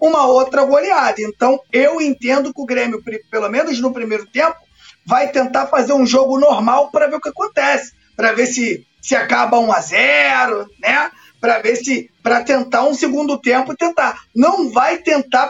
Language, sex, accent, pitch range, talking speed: Portuguese, male, Brazilian, 245-285 Hz, 180 wpm